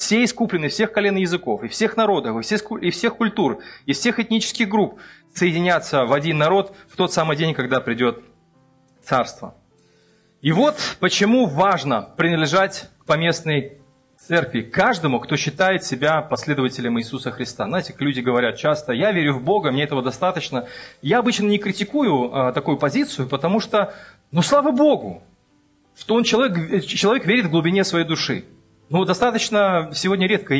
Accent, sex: native, male